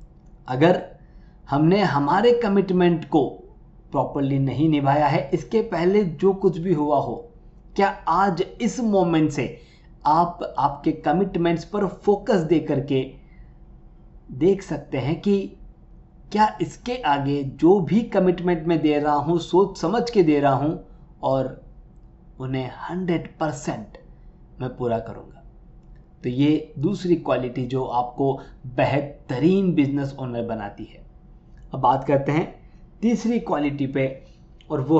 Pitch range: 145-190 Hz